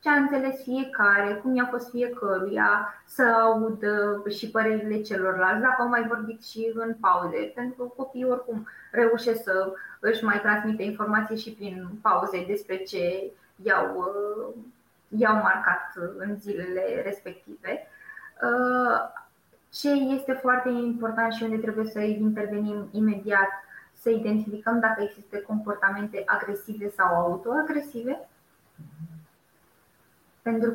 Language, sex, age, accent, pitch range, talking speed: Romanian, female, 20-39, native, 205-235 Hz, 115 wpm